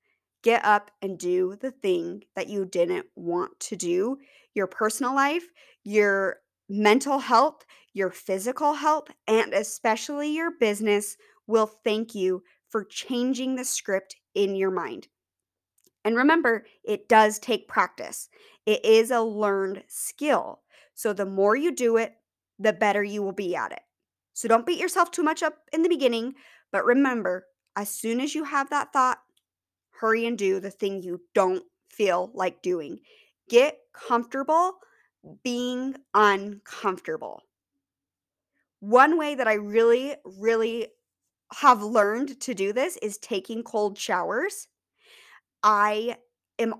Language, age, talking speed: English, 20-39, 140 wpm